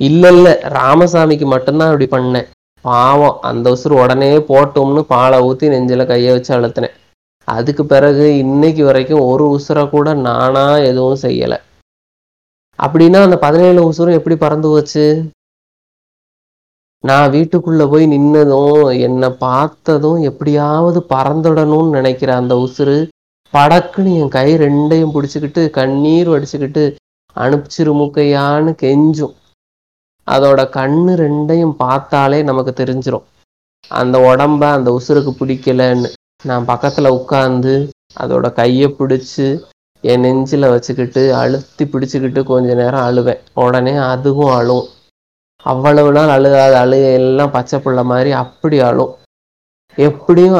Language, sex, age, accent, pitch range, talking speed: Tamil, male, 30-49, native, 130-150 Hz, 110 wpm